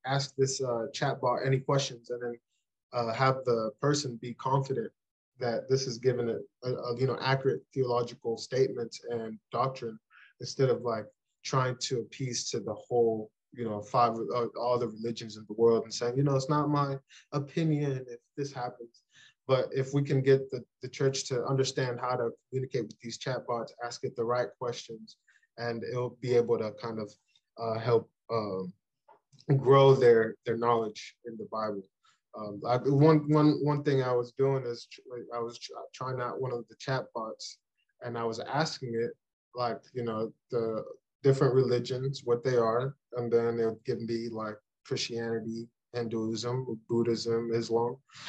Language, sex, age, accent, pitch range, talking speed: English, male, 20-39, American, 115-135 Hz, 175 wpm